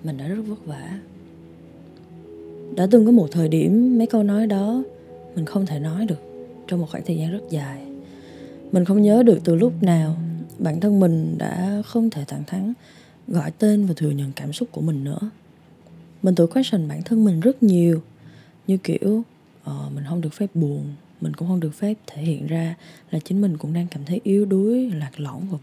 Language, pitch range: Vietnamese, 155-210 Hz